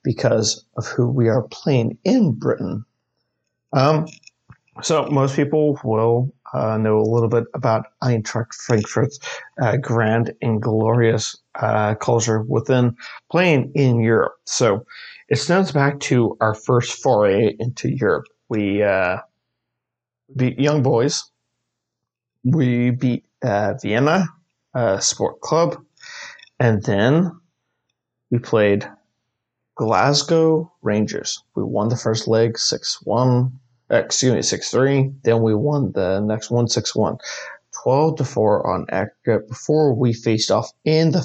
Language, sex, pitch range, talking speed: English, male, 115-145 Hz, 120 wpm